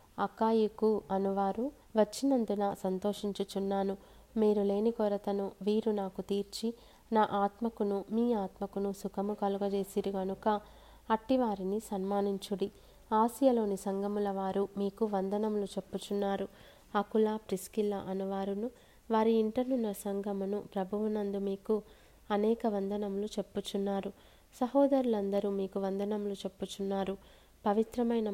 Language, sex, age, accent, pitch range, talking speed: Telugu, female, 20-39, native, 195-215 Hz, 85 wpm